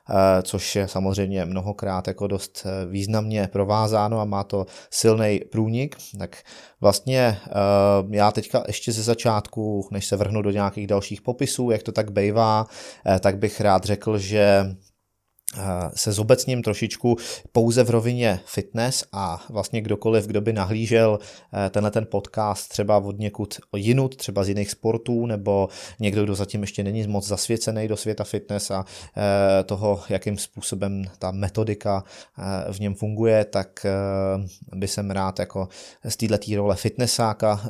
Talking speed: 140 wpm